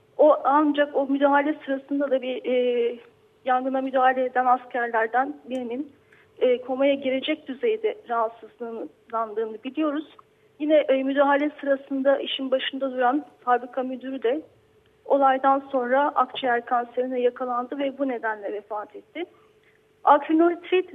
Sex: female